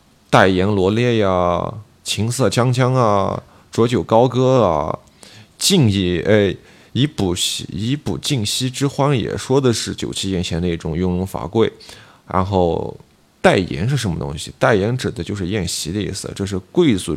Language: Chinese